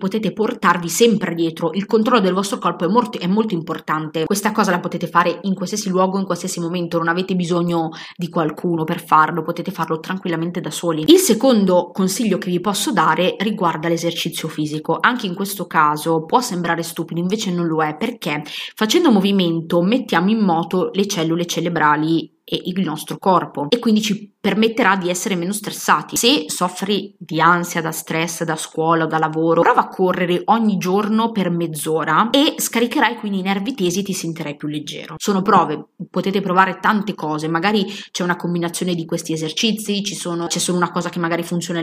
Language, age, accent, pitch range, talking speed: Italian, 20-39, native, 165-200 Hz, 185 wpm